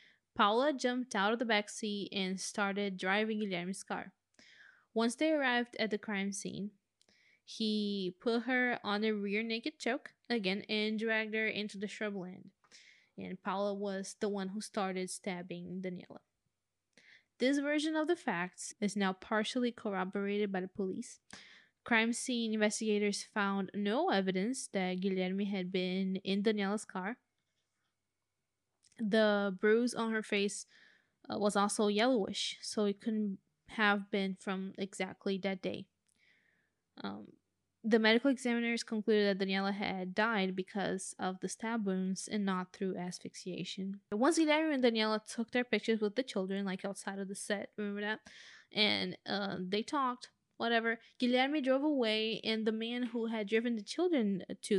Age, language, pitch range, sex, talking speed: 10-29, English, 195-230 Hz, female, 150 wpm